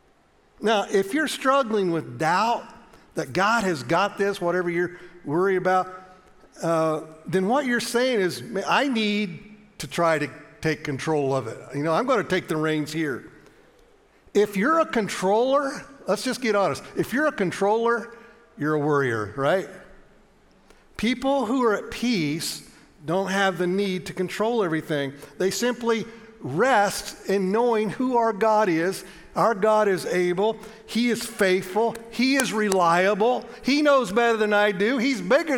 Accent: American